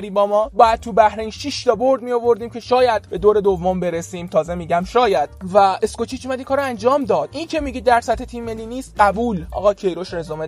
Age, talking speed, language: 20-39, 205 wpm, Persian